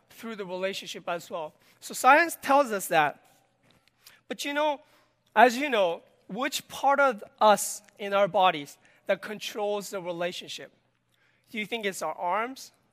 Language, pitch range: Korean, 200-250 Hz